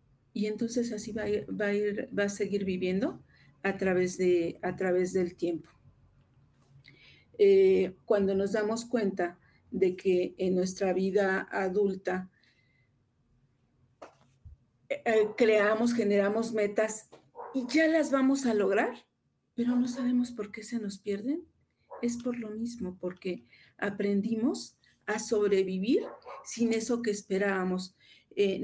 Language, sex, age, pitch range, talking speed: Spanish, female, 50-69, 185-220 Hz, 115 wpm